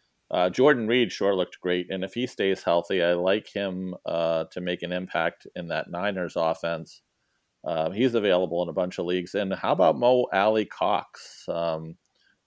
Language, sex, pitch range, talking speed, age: English, male, 90-115 Hz, 190 wpm, 40-59